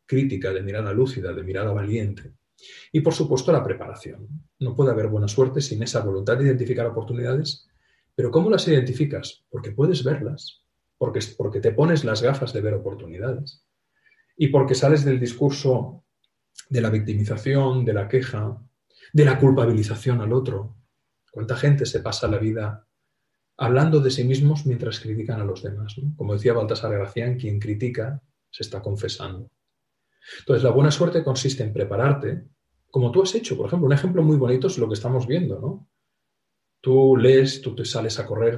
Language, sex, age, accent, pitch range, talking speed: Spanish, male, 40-59, Spanish, 110-140 Hz, 170 wpm